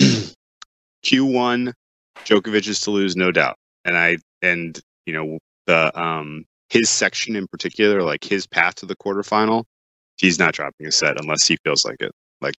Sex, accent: male, American